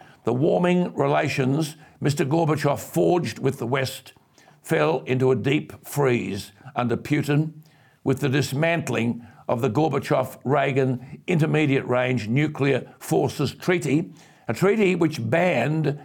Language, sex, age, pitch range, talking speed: English, male, 60-79, 120-150 Hz, 110 wpm